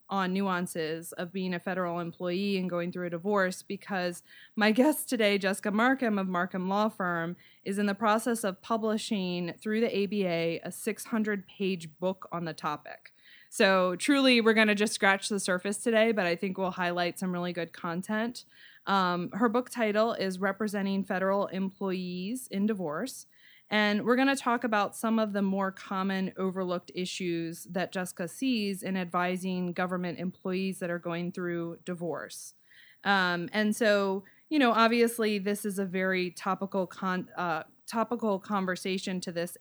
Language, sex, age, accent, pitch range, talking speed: English, female, 20-39, American, 180-210 Hz, 160 wpm